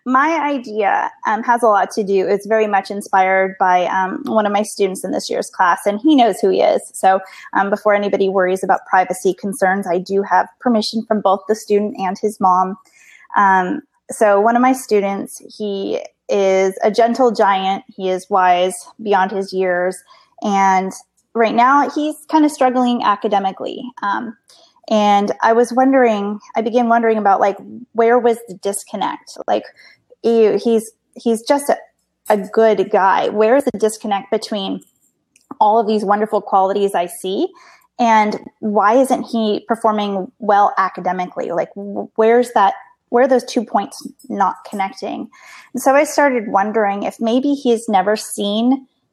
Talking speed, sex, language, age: 165 wpm, female, English, 20-39